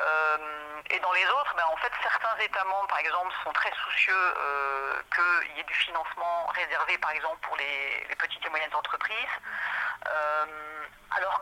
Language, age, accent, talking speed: French, 40-59, French, 175 wpm